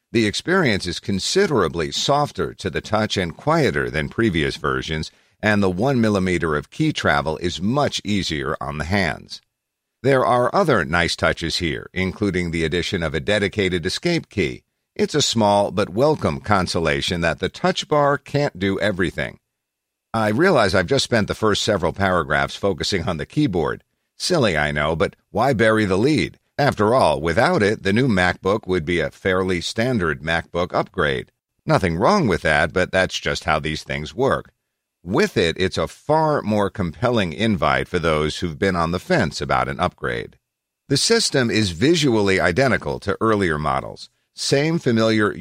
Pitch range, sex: 85-110 Hz, male